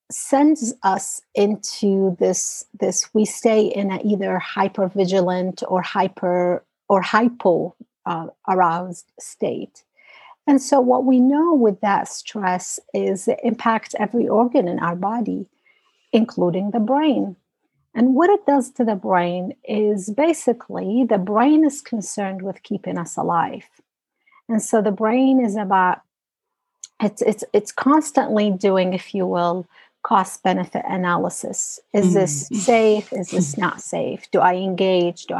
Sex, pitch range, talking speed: female, 190-265 Hz, 135 wpm